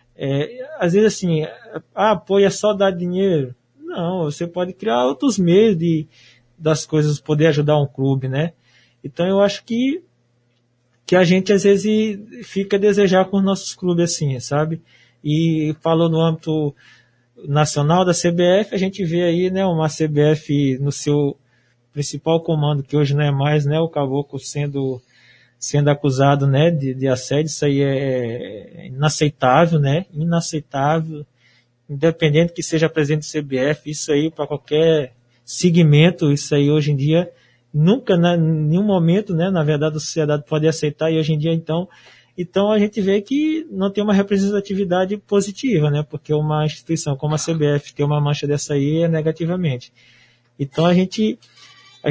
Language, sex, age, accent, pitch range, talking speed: Portuguese, male, 20-39, Brazilian, 145-180 Hz, 160 wpm